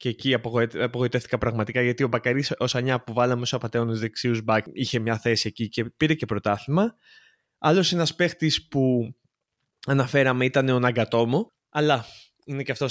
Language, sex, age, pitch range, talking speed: Greek, male, 20-39, 115-150 Hz, 165 wpm